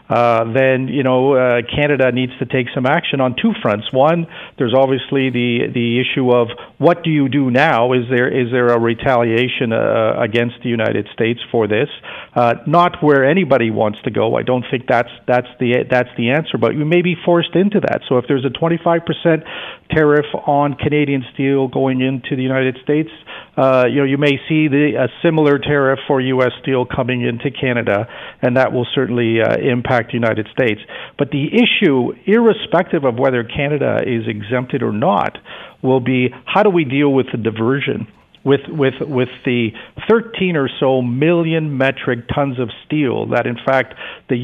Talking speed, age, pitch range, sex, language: 190 wpm, 50-69, 125-150 Hz, male, English